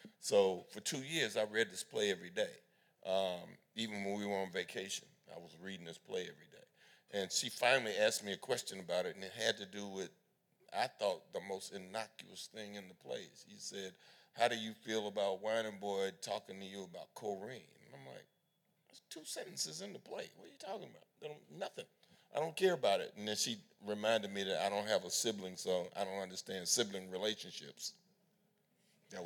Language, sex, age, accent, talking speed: English, male, 50-69, American, 205 wpm